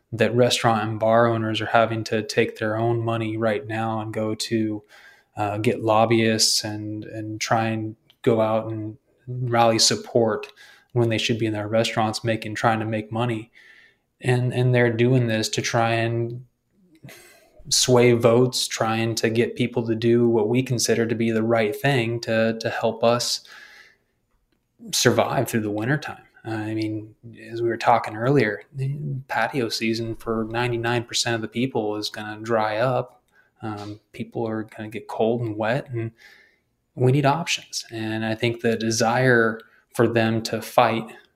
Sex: male